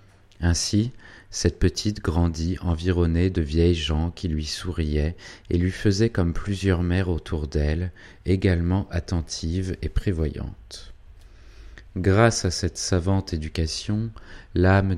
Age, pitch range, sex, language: 30-49, 80-100 Hz, male, French